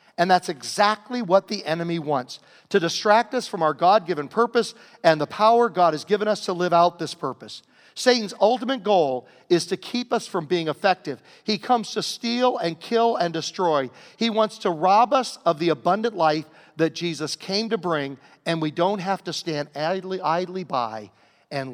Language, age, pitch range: English, 50-69, 150-210 Hz